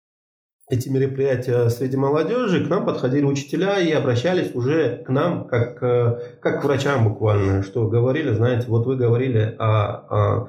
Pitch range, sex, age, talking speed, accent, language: 110-135 Hz, male, 20-39, 150 wpm, native, Russian